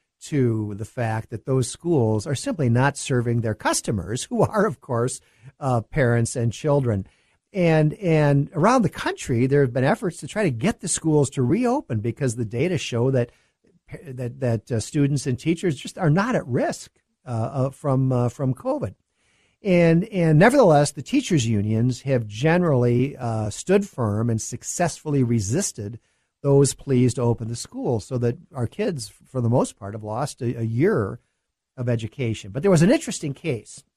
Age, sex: 50-69, male